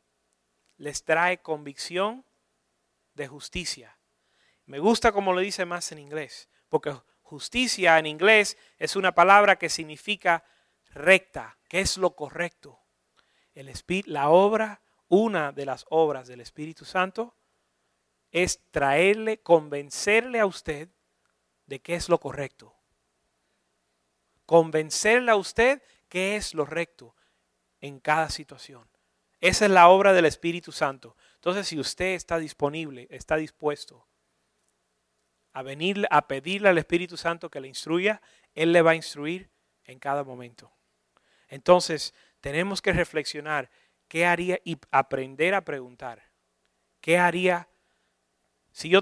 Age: 30-49